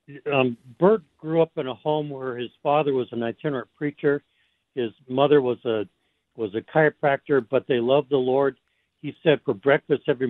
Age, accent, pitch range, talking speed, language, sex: 60-79, American, 120-145 Hz, 180 wpm, English, male